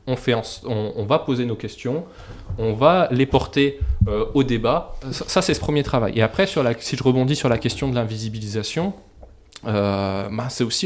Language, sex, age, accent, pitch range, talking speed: French, male, 20-39, French, 110-140 Hz, 210 wpm